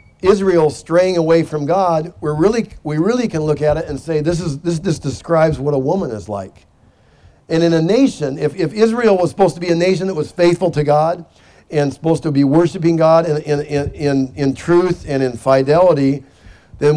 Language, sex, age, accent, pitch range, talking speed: English, male, 50-69, American, 140-170 Hz, 205 wpm